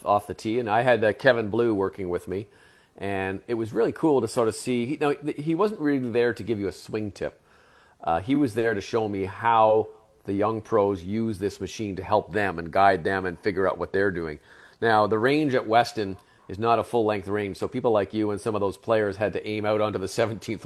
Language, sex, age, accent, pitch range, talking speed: English, male, 40-59, American, 95-120 Hz, 250 wpm